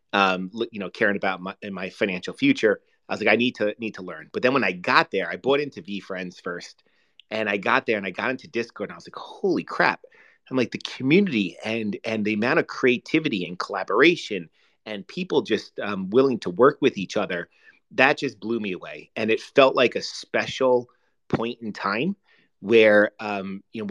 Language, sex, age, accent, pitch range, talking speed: English, male, 30-49, American, 100-125 Hz, 215 wpm